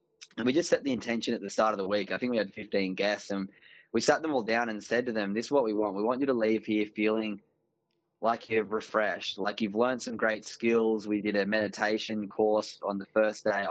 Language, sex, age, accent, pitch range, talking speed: English, male, 20-39, Australian, 100-115 Hz, 255 wpm